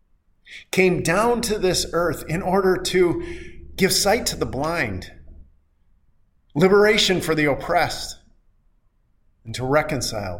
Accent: American